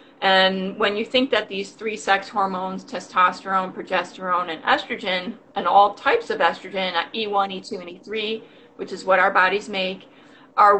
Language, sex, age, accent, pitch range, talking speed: English, female, 30-49, American, 185-235 Hz, 160 wpm